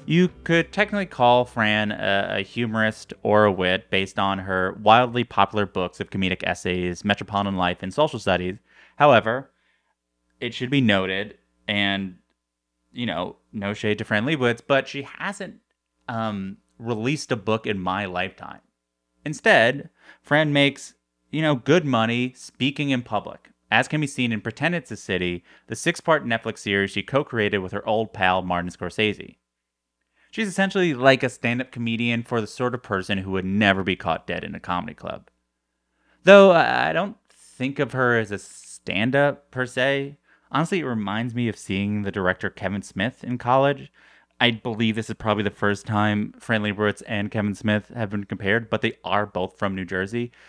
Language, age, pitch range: English, 30-49, 95-125 Hz